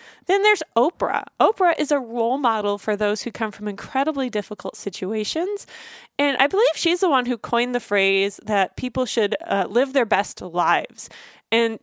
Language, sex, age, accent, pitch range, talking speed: English, female, 20-39, American, 210-290 Hz, 180 wpm